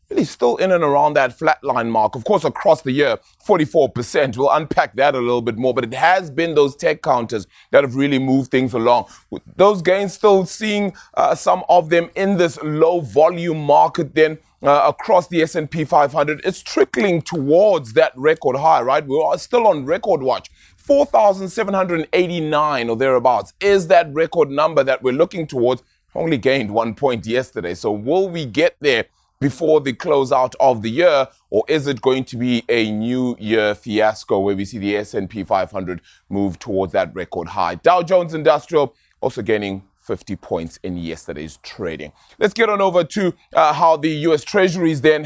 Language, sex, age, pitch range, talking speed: English, male, 20-39, 125-175 Hz, 180 wpm